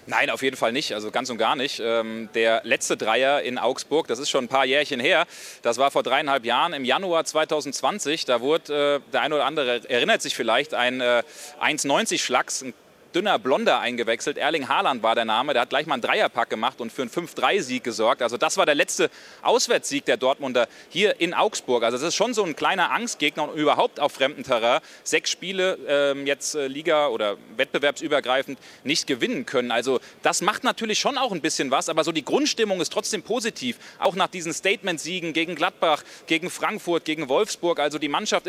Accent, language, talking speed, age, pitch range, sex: German, German, 195 wpm, 30-49, 140-180 Hz, male